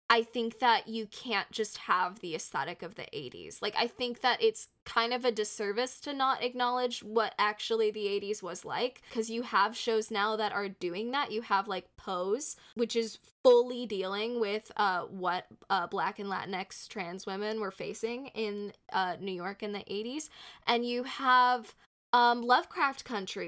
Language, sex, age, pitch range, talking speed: English, female, 10-29, 205-245 Hz, 180 wpm